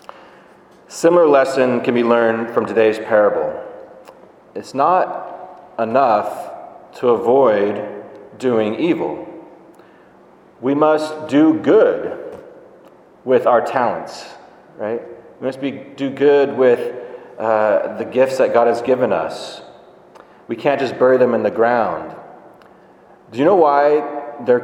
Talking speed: 120 wpm